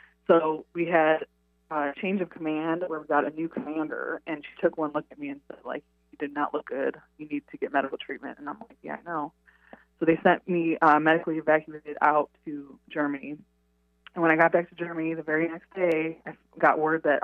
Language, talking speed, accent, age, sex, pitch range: English, 225 wpm, American, 20-39, female, 150-170 Hz